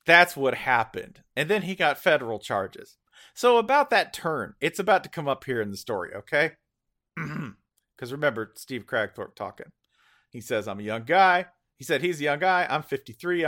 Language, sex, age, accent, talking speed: English, male, 40-59, American, 185 wpm